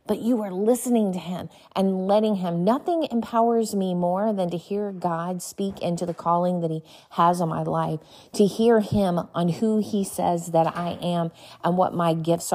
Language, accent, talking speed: English, American, 195 wpm